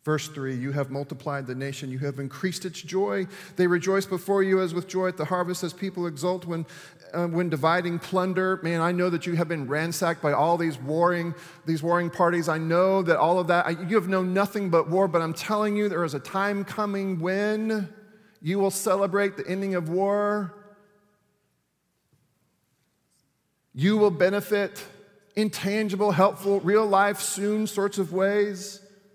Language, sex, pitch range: English, male, 170-205 Hz